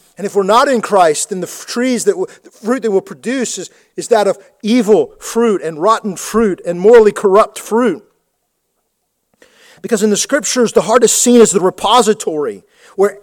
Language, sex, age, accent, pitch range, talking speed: English, male, 40-59, American, 190-230 Hz, 185 wpm